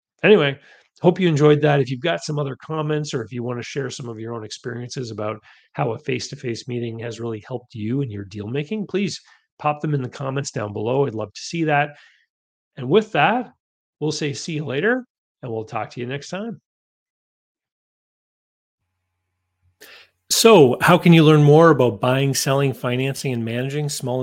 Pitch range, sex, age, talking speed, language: 120-150 Hz, male, 40-59, 185 wpm, English